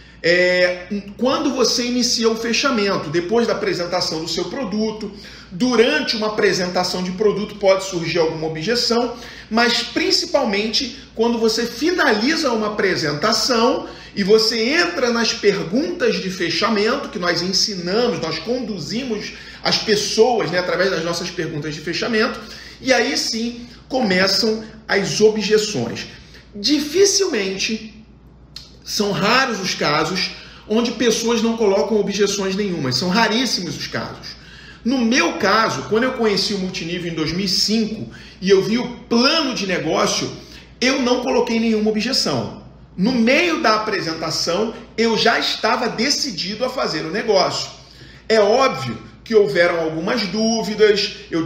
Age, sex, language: 40-59, male, Portuguese